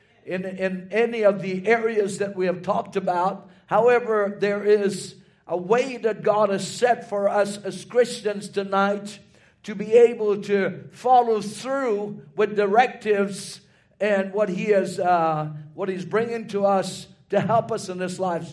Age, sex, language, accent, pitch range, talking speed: 60-79, male, English, American, 190-225 Hz, 160 wpm